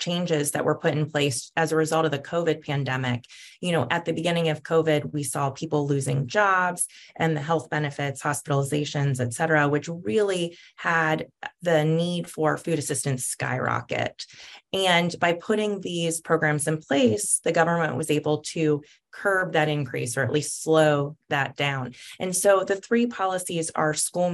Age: 20-39